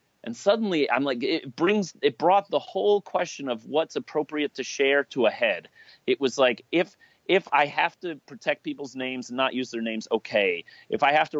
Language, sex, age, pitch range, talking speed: English, male, 30-49, 140-175 Hz, 210 wpm